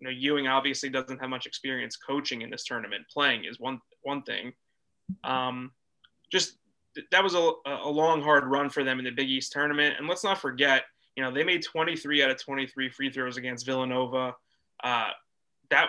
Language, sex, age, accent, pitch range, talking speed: English, male, 20-39, American, 130-145 Hz, 195 wpm